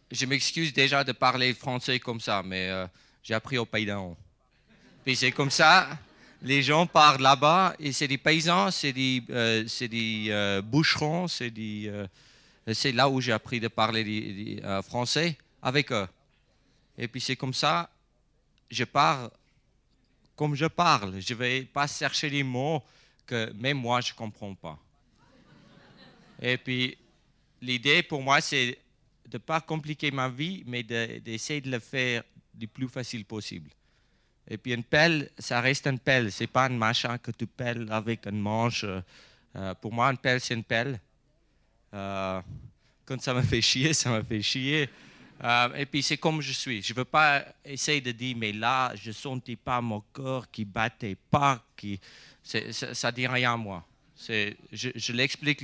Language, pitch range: French, 110-140 Hz